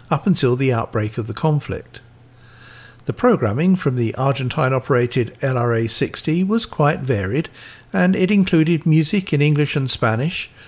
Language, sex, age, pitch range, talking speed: English, male, 50-69, 120-150 Hz, 135 wpm